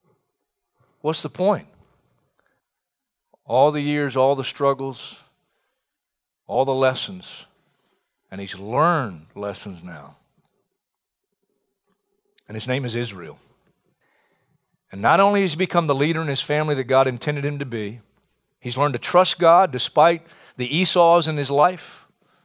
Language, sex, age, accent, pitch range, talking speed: English, male, 50-69, American, 130-170 Hz, 135 wpm